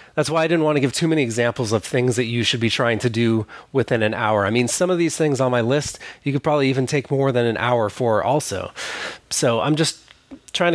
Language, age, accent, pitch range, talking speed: English, 30-49, American, 115-140 Hz, 255 wpm